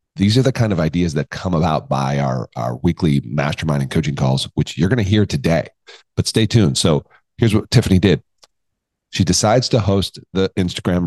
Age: 40-59